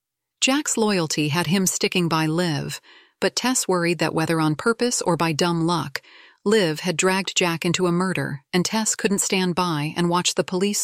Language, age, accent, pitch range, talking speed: English, 40-59, American, 160-215 Hz, 190 wpm